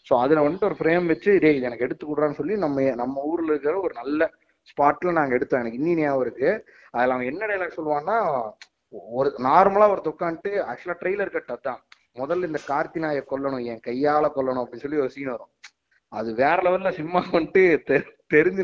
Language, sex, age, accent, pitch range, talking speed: Tamil, male, 30-49, native, 130-170 Hz, 165 wpm